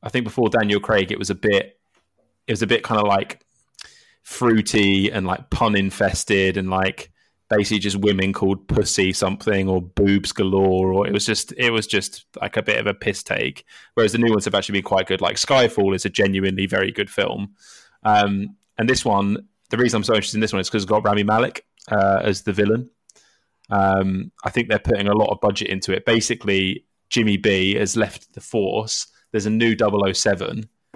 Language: English